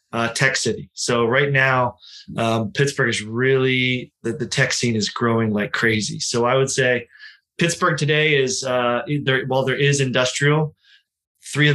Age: 20-39